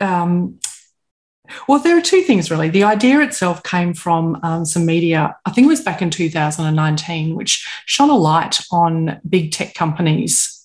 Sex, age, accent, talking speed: female, 30-49, Australian, 170 wpm